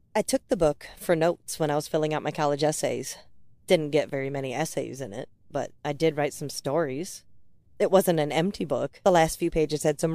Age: 40-59